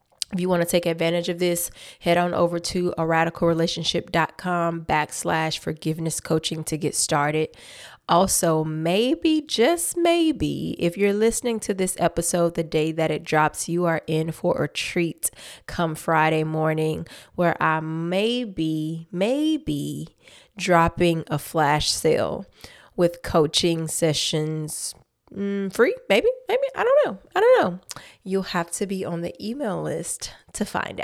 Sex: female